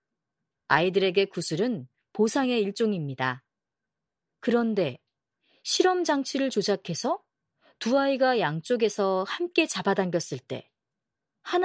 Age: 40-59